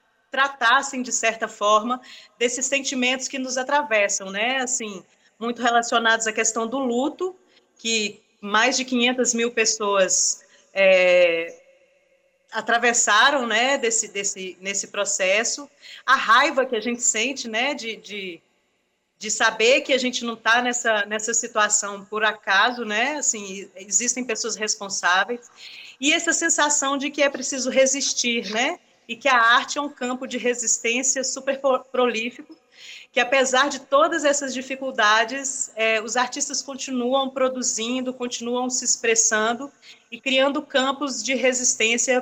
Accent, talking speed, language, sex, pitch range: Brazilian, 130 wpm, Portuguese, female, 220-265 Hz